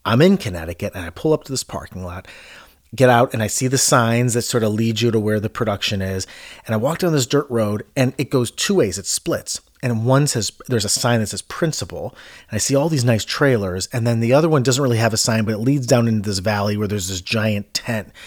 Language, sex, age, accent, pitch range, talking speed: English, male, 30-49, American, 105-135 Hz, 265 wpm